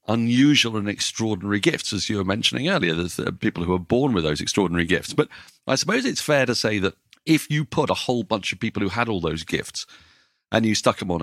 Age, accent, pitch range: 40-59, British, 90-115 Hz